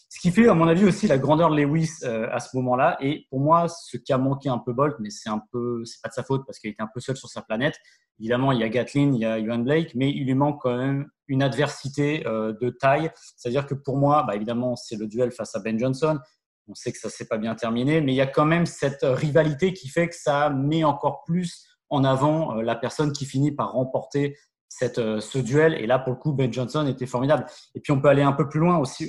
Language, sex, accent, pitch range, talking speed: French, male, French, 125-150 Hz, 270 wpm